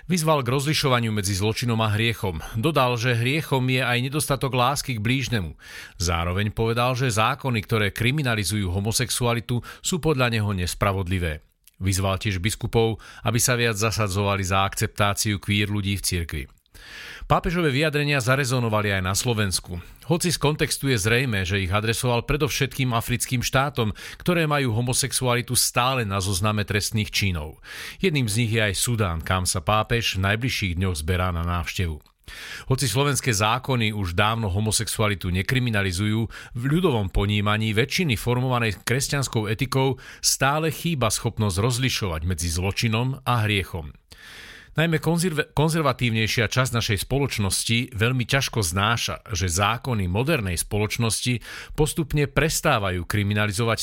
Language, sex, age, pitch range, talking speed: Slovak, male, 40-59, 100-130 Hz, 130 wpm